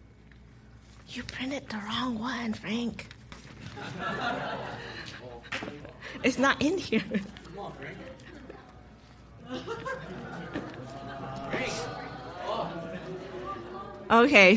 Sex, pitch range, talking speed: female, 170-210 Hz, 45 wpm